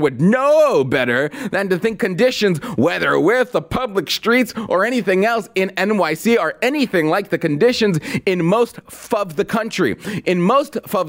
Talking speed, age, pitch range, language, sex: 160 wpm, 30-49, 155-225 Hz, English, male